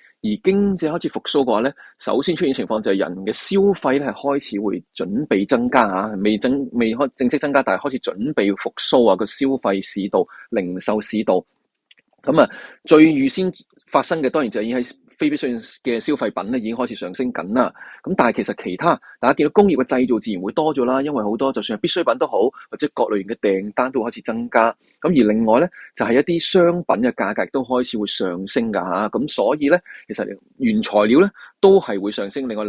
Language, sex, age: Chinese, male, 20-39